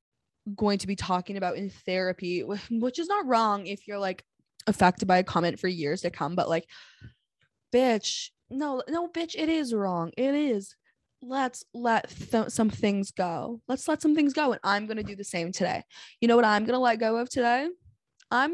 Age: 20-39